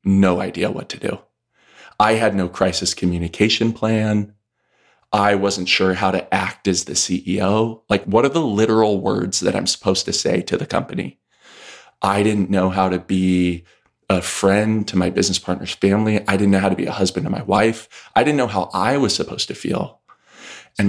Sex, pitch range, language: male, 95-110 Hz, English